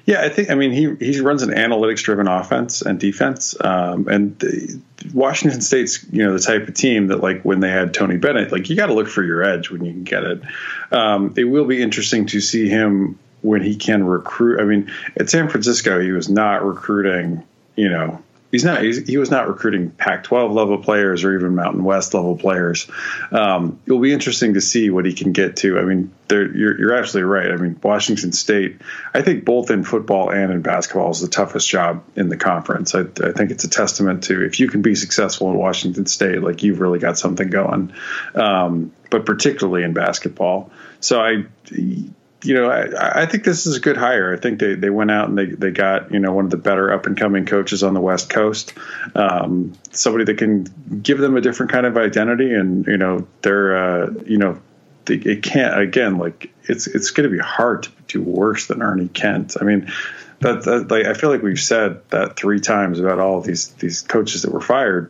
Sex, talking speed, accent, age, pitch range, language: male, 220 wpm, American, 20-39, 95-115 Hz, English